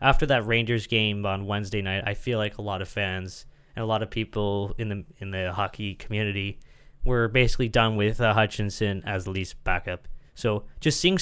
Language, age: English, 20-39